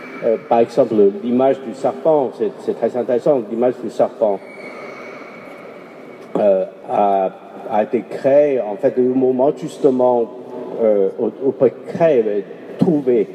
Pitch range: 115-145 Hz